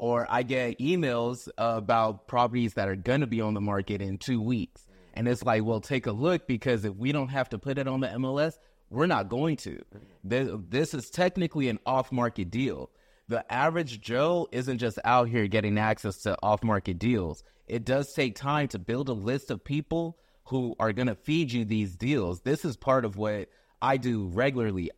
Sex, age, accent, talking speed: male, 30-49, American, 200 wpm